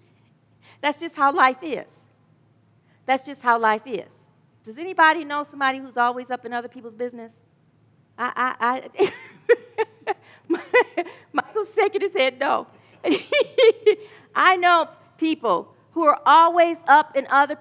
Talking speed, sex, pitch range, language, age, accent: 130 wpm, female, 260-405 Hz, English, 40-59, American